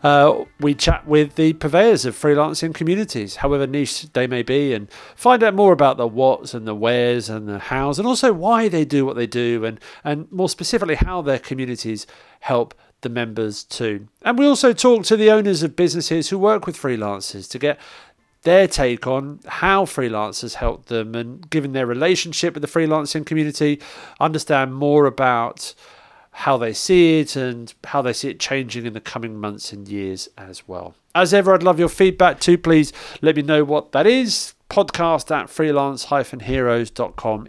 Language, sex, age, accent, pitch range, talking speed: English, male, 40-59, British, 120-165 Hz, 180 wpm